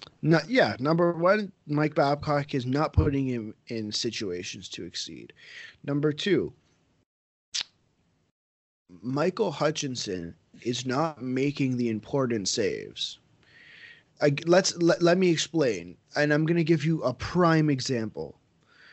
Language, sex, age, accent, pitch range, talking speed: English, male, 30-49, American, 125-165 Hz, 125 wpm